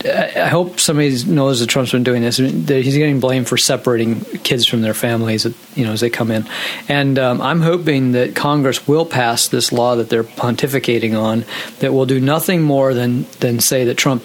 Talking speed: 205 wpm